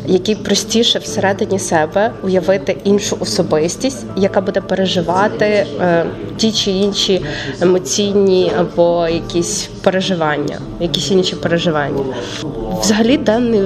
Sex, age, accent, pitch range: female, 20-39, native, 170-200 Hz